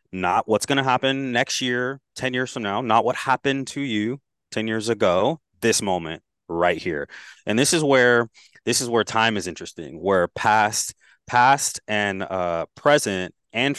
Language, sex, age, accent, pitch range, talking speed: English, male, 20-39, American, 100-125 Hz, 175 wpm